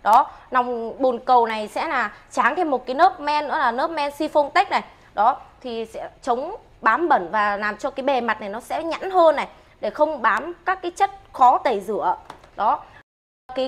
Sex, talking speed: female, 210 wpm